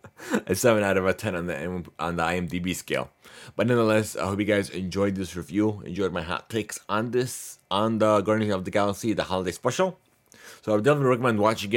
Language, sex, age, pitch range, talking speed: English, male, 30-49, 100-125 Hz, 215 wpm